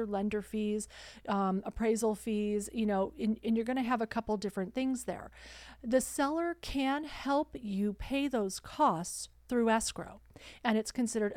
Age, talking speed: 40-59, 165 wpm